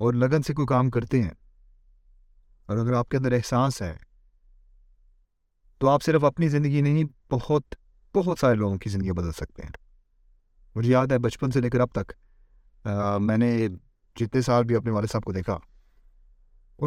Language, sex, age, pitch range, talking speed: Urdu, male, 30-49, 85-125 Hz, 170 wpm